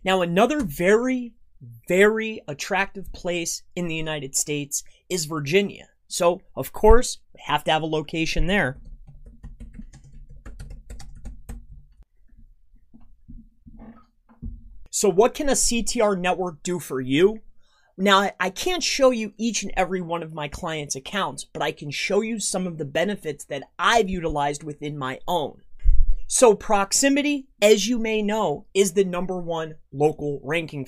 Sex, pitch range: male, 155-220 Hz